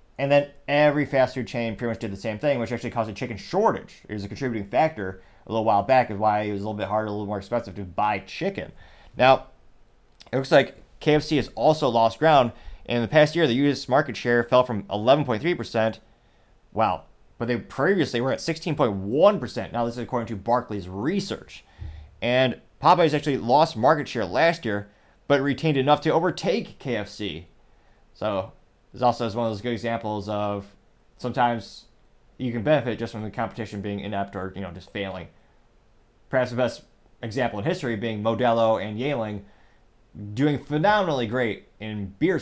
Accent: American